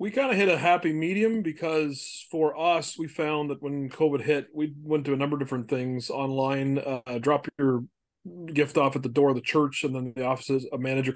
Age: 30-49